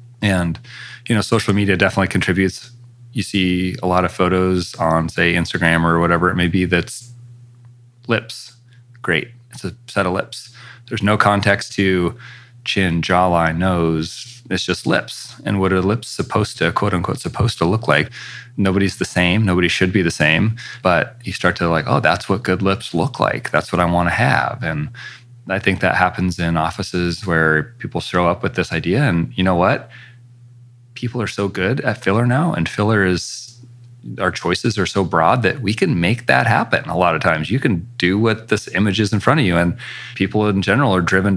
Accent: American